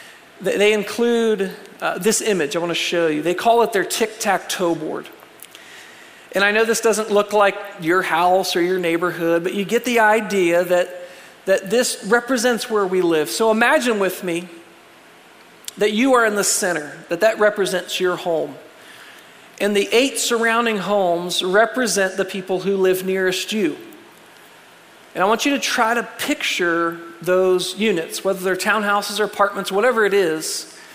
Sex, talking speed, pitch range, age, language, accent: male, 165 wpm, 180-225 Hz, 40-59, English, American